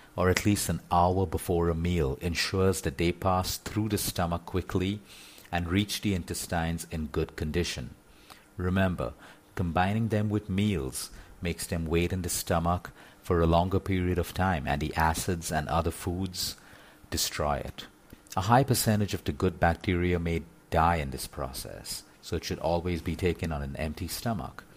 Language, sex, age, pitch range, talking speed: English, male, 50-69, 80-95 Hz, 170 wpm